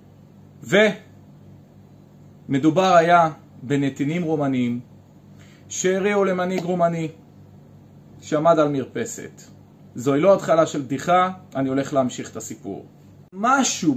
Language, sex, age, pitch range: Hebrew, male, 40-59, 120-170 Hz